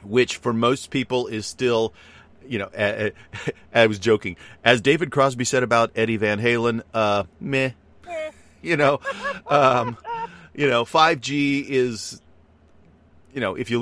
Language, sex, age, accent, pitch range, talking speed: English, male, 40-59, American, 80-110 Hz, 145 wpm